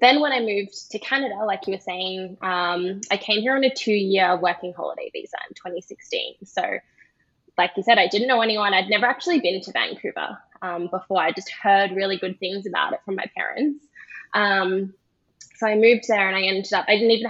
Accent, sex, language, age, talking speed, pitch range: Australian, female, English, 10-29, 210 wpm, 185-230 Hz